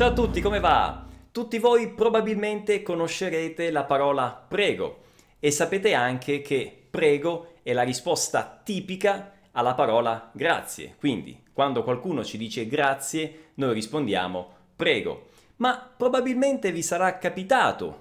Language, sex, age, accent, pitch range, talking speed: Italian, male, 30-49, native, 160-235 Hz, 125 wpm